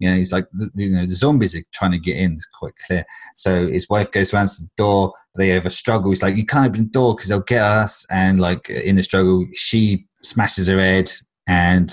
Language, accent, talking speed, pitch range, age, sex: English, British, 255 wpm, 90-105 Hz, 30-49, male